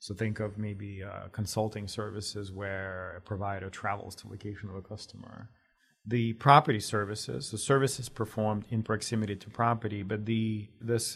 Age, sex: 40-59, male